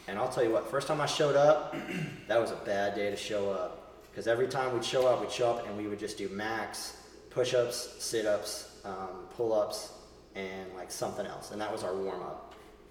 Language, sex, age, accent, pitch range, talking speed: English, male, 30-49, American, 105-130 Hz, 215 wpm